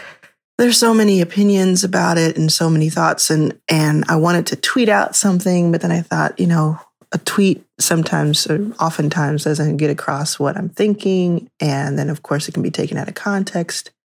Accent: American